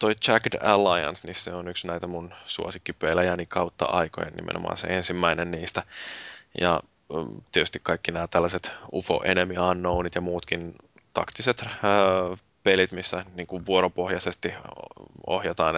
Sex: male